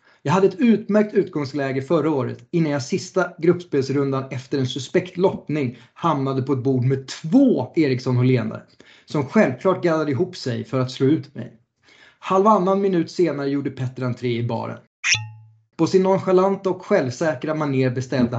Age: 20-39